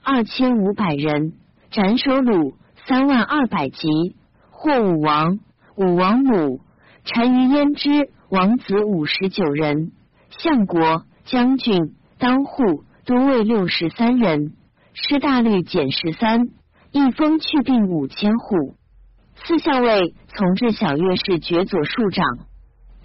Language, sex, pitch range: Chinese, female, 180-255 Hz